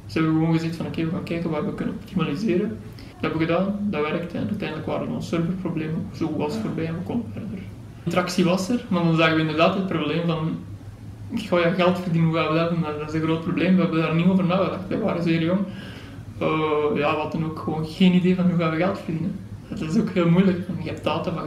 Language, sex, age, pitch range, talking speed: Dutch, male, 20-39, 150-185 Hz, 265 wpm